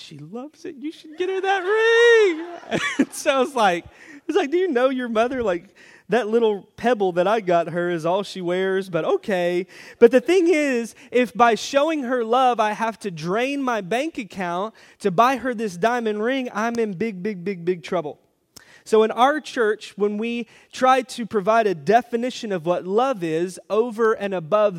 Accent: American